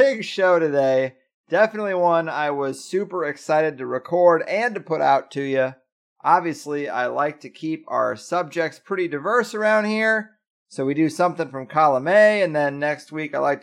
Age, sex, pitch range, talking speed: 30-49, male, 150-200 Hz, 180 wpm